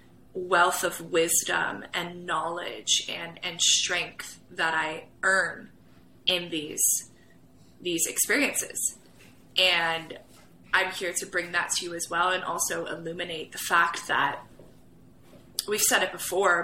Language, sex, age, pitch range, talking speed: English, female, 20-39, 170-205 Hz, 125 wpm